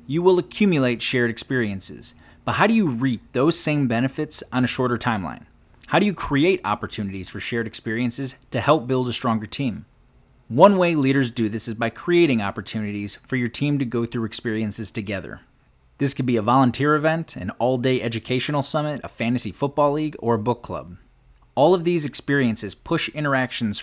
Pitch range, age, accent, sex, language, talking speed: 115-140 Hz, 30-49, American, male, English, 185 wpm